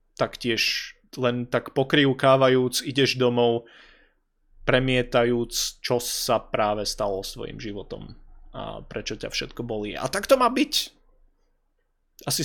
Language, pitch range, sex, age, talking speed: Slovak, 115-135 Hz, male, 20-39, 115 wpm